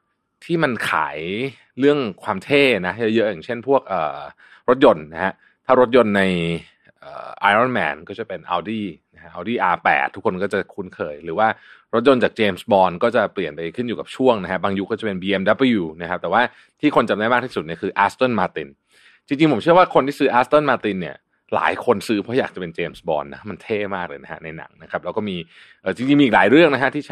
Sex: male